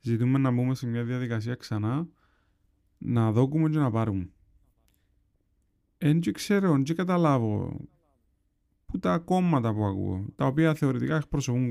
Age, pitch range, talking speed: 30-49, 100-135 Hz, 135 wpm